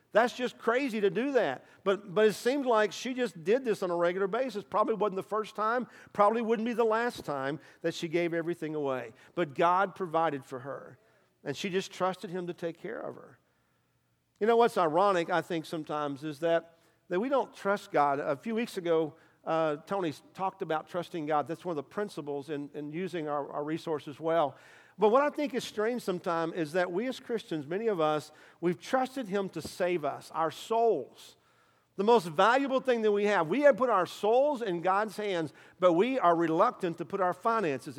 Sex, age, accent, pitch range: male, 50-69, American, 160-215 Hz